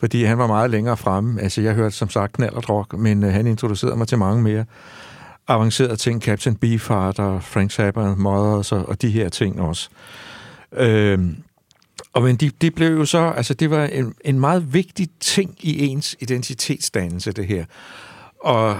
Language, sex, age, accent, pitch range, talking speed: Danish, male, 60-79, native, 110-140 Hz, 180 wpm